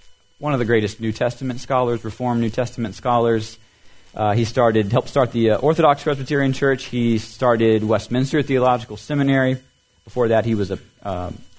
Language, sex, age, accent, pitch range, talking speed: English, male, 30-49, American, 105-130 Hz, 165 wpm